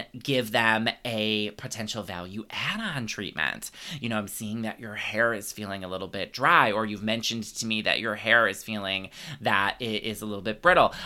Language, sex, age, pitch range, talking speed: English, male, 20-39, 105-140 Hz, 200 wpm